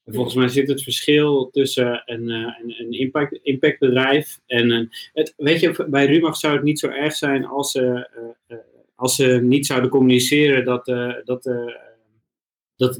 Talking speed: 160 wpm